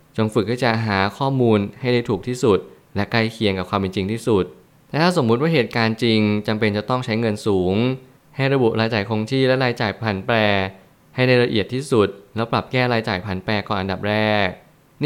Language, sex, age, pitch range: Thai, male, 20-39, 100-120 Hz